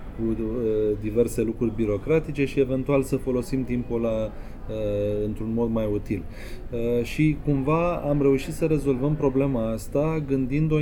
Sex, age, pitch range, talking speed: male, 20-39, 110-135 Hz, 145 wpm